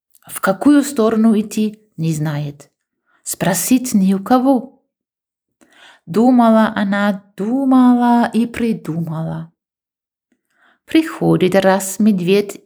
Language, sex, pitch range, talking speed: Ukrainian, female, 170-235 Hz, 85 wpm